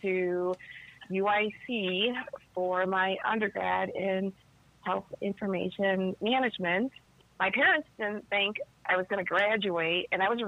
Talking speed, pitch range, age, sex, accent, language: 125 wpm, 175-215 Hz, 30-49, female, American, English